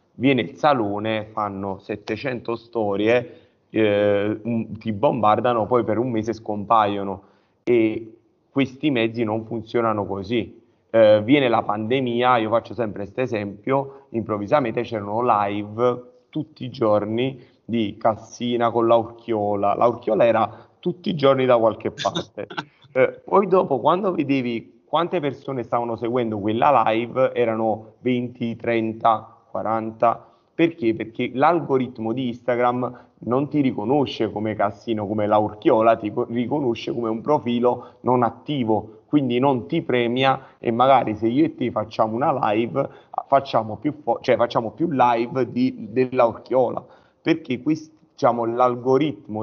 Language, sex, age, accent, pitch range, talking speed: Italian, male, 30-49, native, 110-125 Hz, 135 wpm